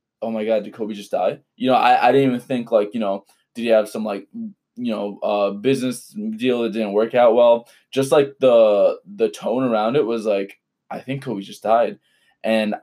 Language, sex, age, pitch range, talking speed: English, male, 20-39, 105-125 Hz, 220 wpm